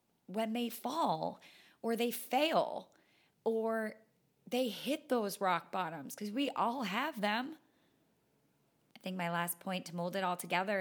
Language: English